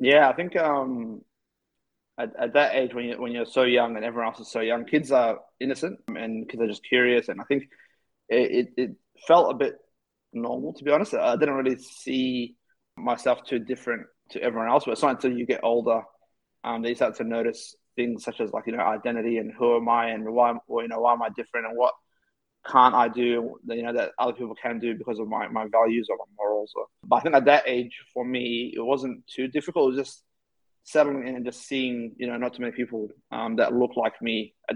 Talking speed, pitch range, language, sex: 235 wpm, 115-130 Hz, English, male